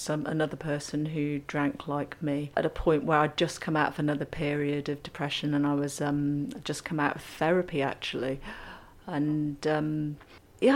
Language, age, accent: English, 40-59, British